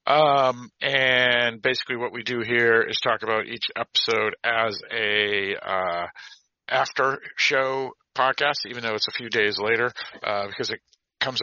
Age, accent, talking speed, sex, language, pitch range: 50-69, American, 150 wpm, male, English, 105-130 Hz